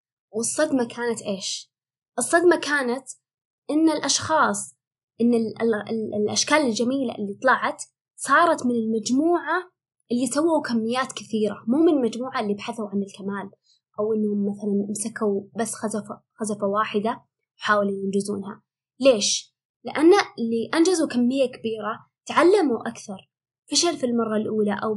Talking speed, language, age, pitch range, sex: 115 wpm, Arabic, 20-39, 210-250 Hz, female